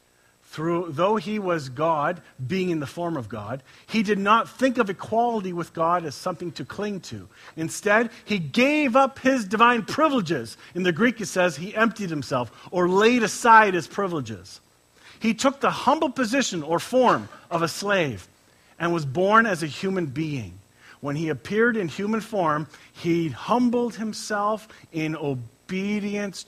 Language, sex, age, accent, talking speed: English, male, 40-59, American, 160 wpm